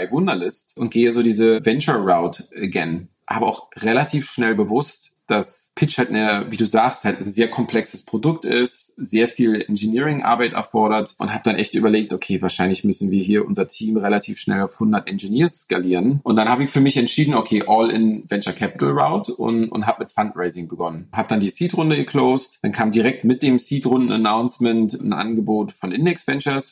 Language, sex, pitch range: German, male, 105-130 Hz